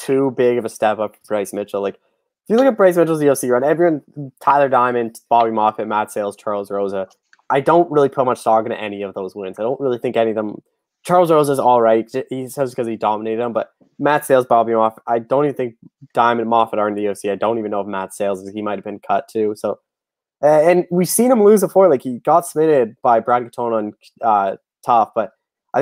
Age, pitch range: 20-39, 110-145 Hz